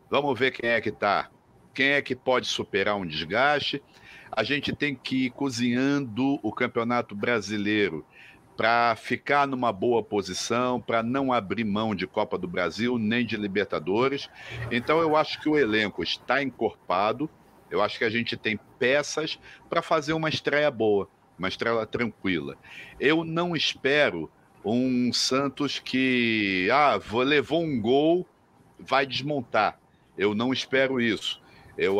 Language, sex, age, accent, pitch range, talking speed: Portuguese, male, 60-79, Brazilian, 115-145 Hz, 145 wpm